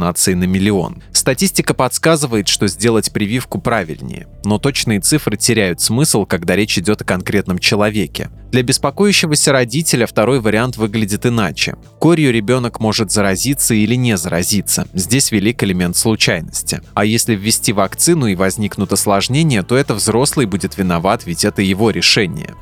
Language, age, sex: Russian, 20-39, male